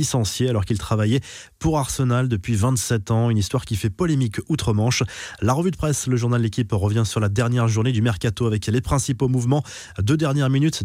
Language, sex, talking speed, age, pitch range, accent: French, male, 195 wpm, 20-39, 110-135 Hz, French